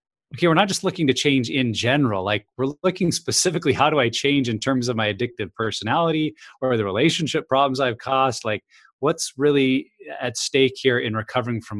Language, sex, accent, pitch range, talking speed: English, male, American, 115-145 Hz, 195 wpm